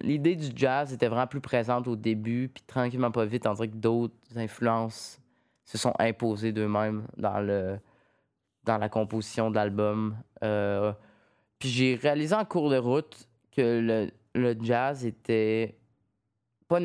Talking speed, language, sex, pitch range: 150 wpm, French, male, 110-130 Hz